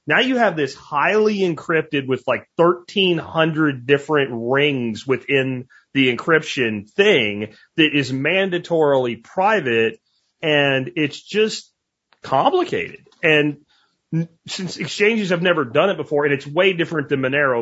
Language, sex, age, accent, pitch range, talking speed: English, male, 30-49, American, 125-155 Hz, 125 wpm